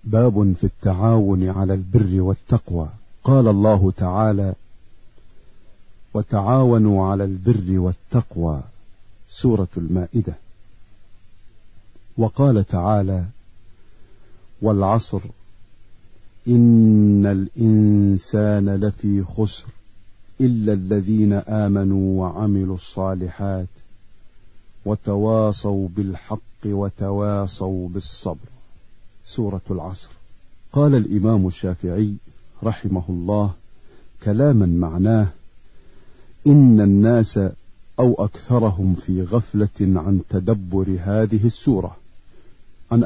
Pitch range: 95-110 Hz